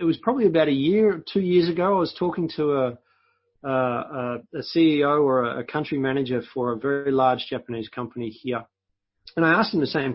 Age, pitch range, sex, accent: 30-49, 120-150 Hz, male, Australian